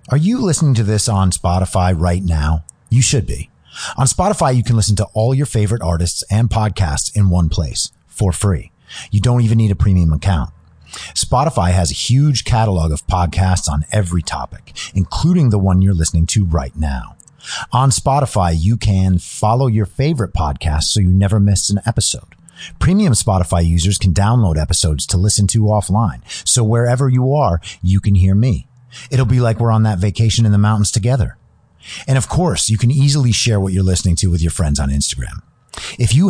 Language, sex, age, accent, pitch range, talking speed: English, male, 30-49, American, 90-120 Hz, 190 wpm